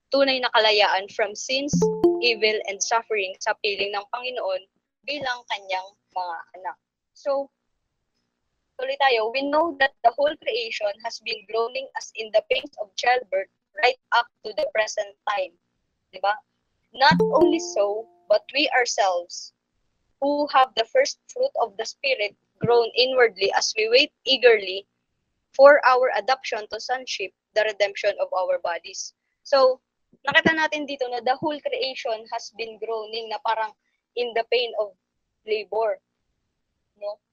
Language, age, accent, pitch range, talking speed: Filipino, 20-39, native, 215-275 Hz, 145 wpm